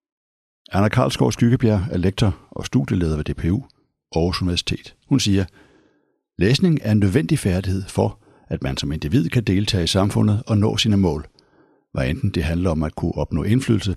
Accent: native